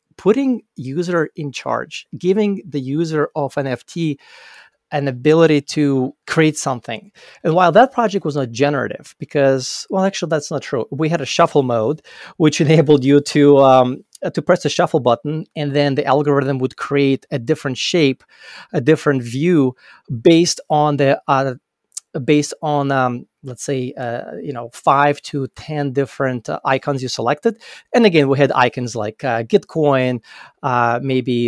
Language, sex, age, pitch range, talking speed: English, male, 30-49, 130-155 Hz, 160 wpm